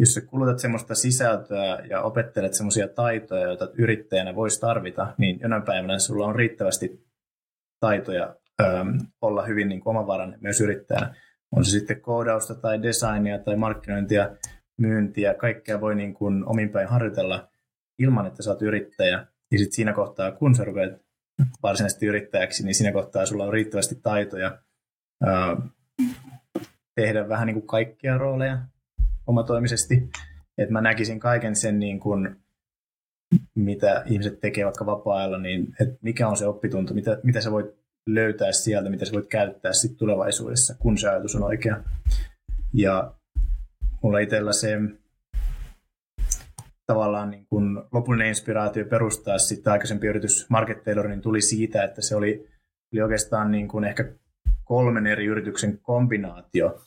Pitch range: 100-115 Hz